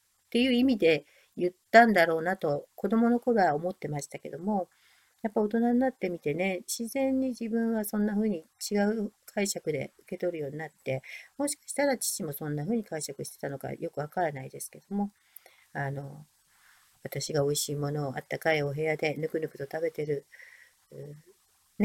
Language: Japanese